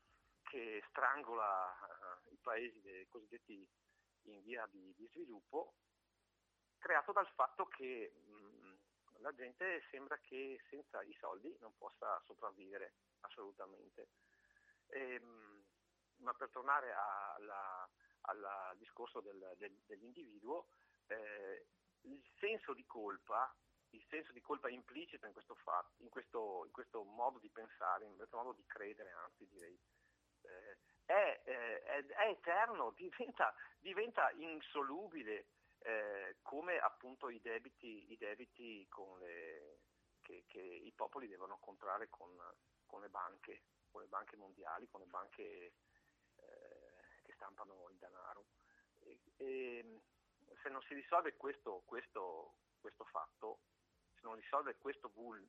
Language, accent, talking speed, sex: Italian, native, 120 wpm, male